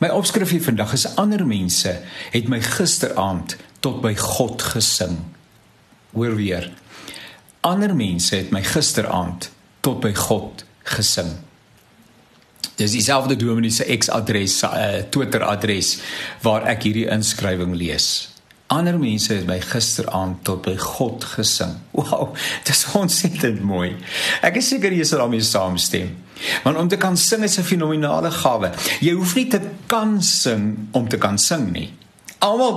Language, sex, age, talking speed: English, male, 50-69, 145 wpm